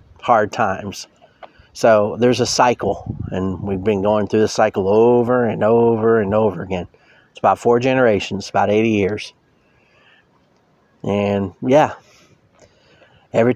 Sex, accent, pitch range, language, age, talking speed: male, American, 105-125 Hz, English, 30-49, 130 wpm